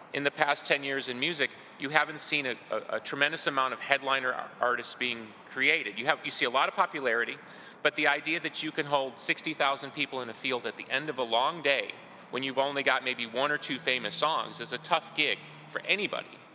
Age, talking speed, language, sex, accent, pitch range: 30-49, 230 wpm, English, male, American, 125-150 Hz